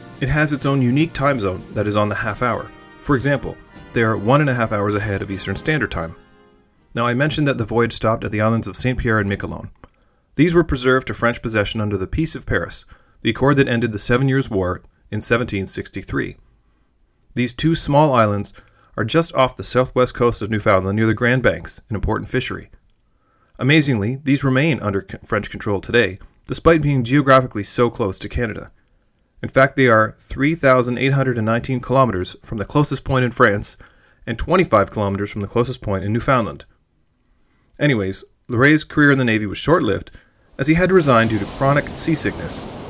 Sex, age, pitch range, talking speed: male, 30-49, 100-135 Hz, 185 wpm